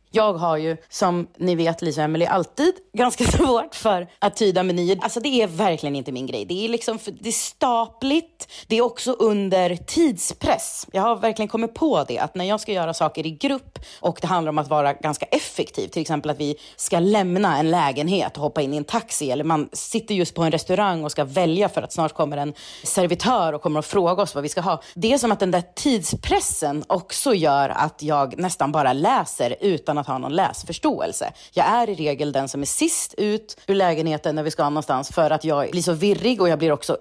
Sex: female